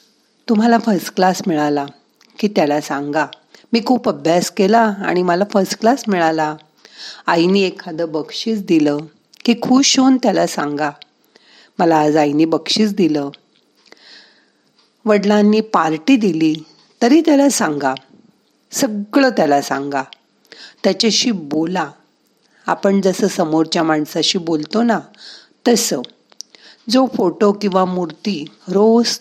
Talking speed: 75 wpm